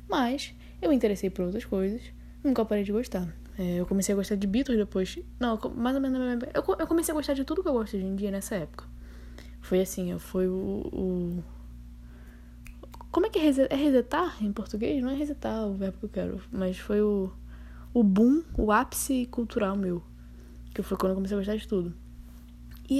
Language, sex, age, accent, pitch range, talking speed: Portuguese, female, 10-29, Brazilian, 185-265 Hz, 200 wpm